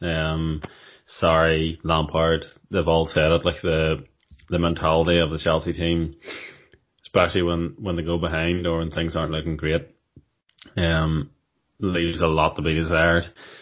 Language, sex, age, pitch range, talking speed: English, male, 20-39, 80-85 Hz, 150 wpm